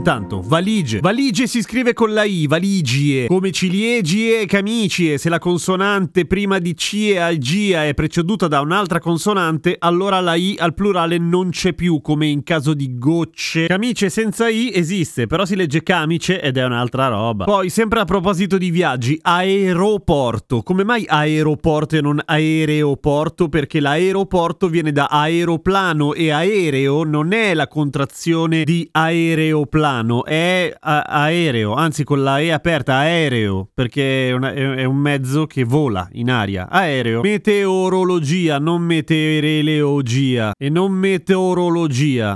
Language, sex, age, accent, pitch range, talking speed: Italian, male, 30-49, native, 145-185 Hz, 145 wpm